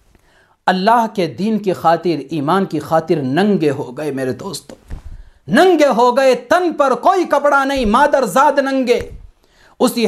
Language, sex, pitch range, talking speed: English, male, 220-295 Hz, 145 wpm